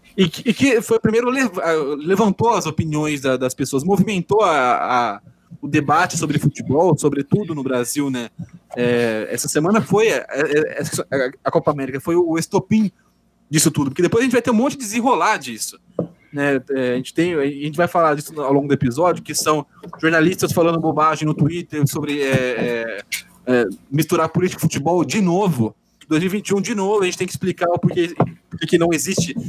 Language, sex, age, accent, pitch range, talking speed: Portuguese, male, 20-39, Brazilian, 150-190 Hz, 160 wpm